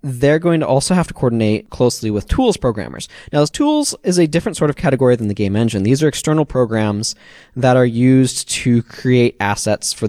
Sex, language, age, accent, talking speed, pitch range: male, English, 20-39, American, 200 wpm, 110-140 Hz